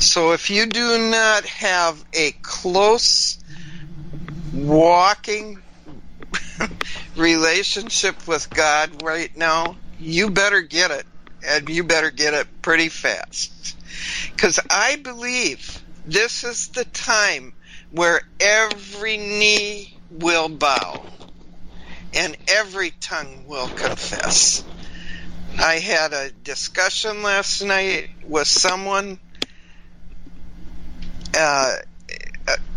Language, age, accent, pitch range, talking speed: English, 60-79, American, 150-195 Hz, 95 wpm